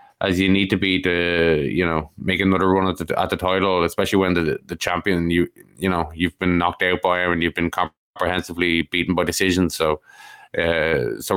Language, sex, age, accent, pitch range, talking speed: English, male, 20-39, Irish, 85-95 Hz, 210 wpm